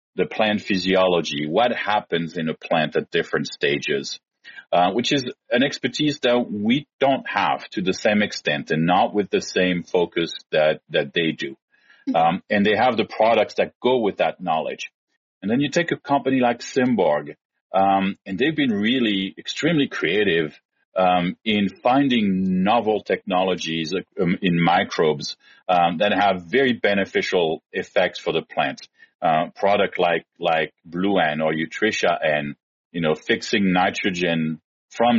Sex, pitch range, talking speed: male, 85-130 Hz, 155 wpm